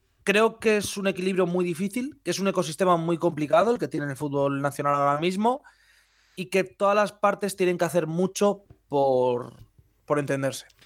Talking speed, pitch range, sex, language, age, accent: 180 wpm, 140-185 Hz, male, Spanish, 30-49, Spanish